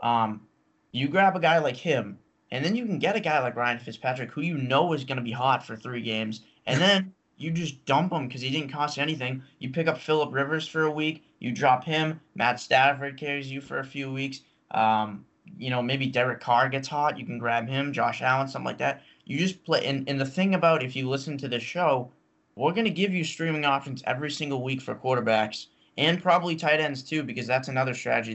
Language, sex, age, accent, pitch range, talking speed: English, male, 20-39, American, 120-155 Hz, 230 wpm